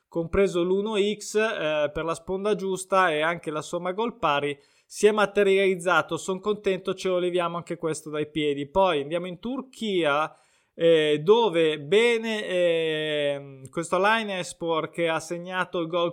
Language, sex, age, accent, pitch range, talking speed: Italian, male, 20-39, native, 155-195 Hz, 155 wpm